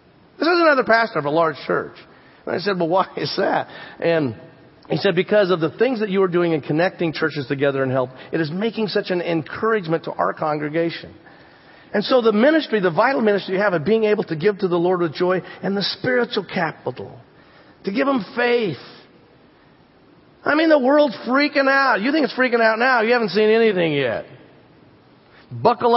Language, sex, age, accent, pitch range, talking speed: English, male, 40-59, American, 180-230 Hz, 200 wpm